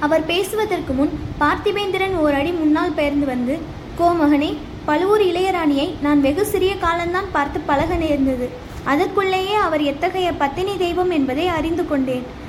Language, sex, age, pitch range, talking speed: Tamil, female, 20-39, 295-365 Hz, 125 wpm